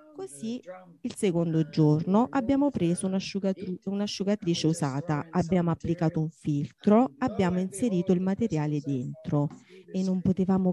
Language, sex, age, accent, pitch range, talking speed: Italian, female, 30-49, native, 160-200 Hz, 110 wpm